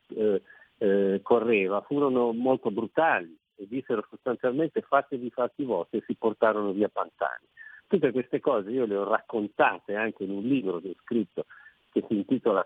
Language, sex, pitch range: Italian, male, 105-135 Hz